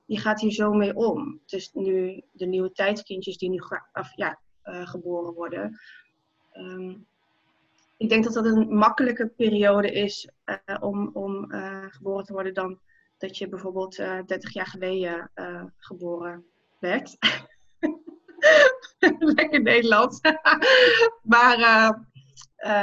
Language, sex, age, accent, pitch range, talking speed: Dutch, female, 20-39, Dutch, 185-225 Hz, 140 wpm